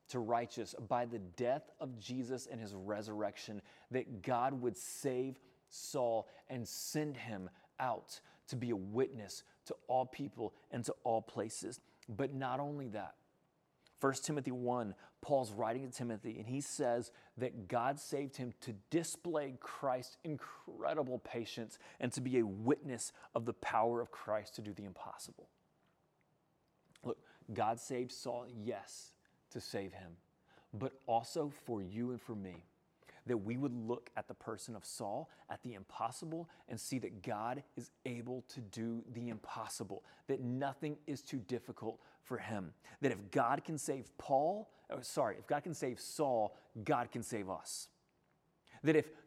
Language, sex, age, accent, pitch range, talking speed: English, male, 30-49, American, 115-145 Hz, 155 wpm